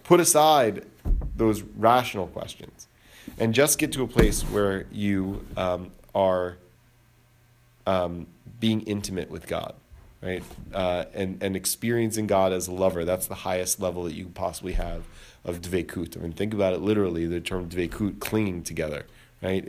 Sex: male